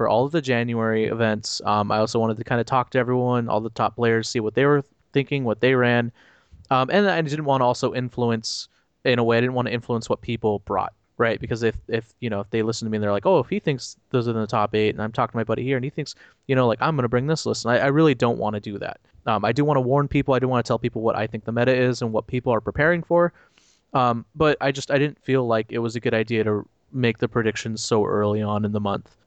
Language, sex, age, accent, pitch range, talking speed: English, male, 20-39, American, 110-135 Hz, 300 wpm